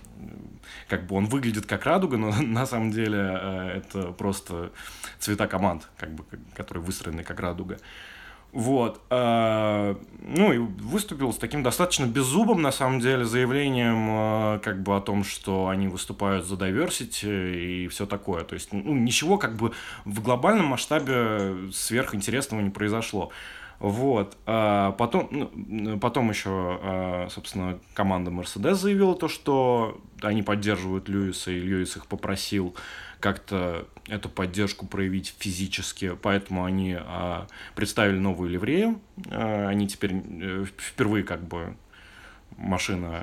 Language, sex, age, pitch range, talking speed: Russian, male, 20-39, 95-115 Hz, 125 wpm